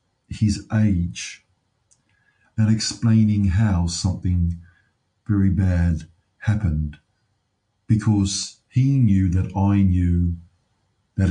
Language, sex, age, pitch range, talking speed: English, male, 50-69, 95-115 Hz, 85 wpm